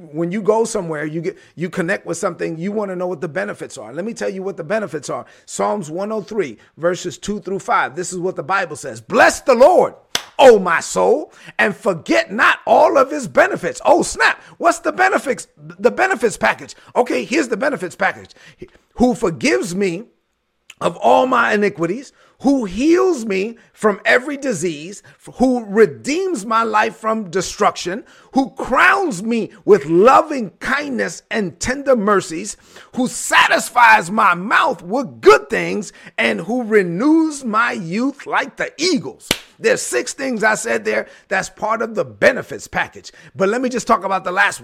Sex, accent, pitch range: male, American, 190-265 Hz